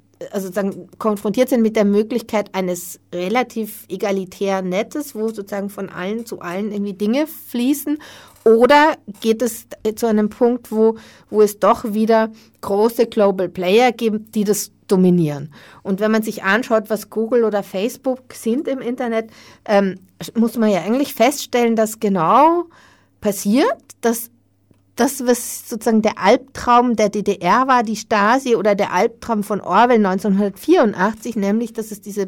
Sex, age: female, 40-59